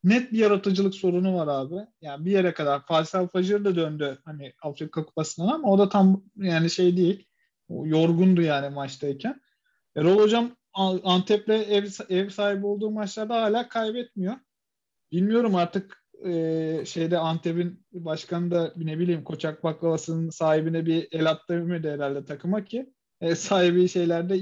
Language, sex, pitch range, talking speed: Turkish, male, 165-210 Hz, 140 wpm